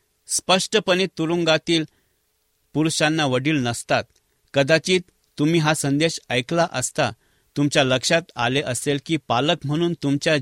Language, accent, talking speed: English, Indian, 110 wpm